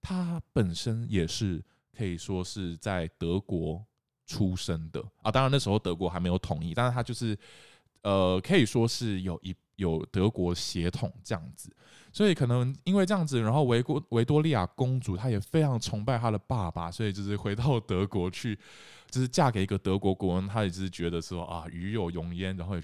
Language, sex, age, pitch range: Chinese, male, 20-39, 95-130 Hz